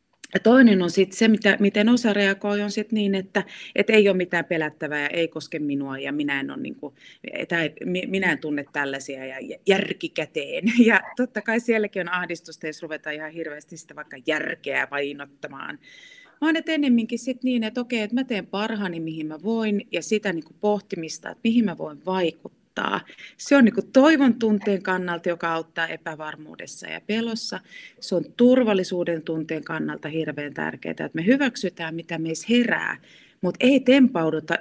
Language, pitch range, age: Finnish, 155-220 Hz, 30-49